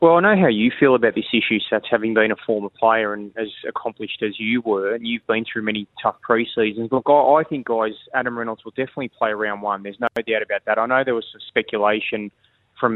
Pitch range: 110-120 Hz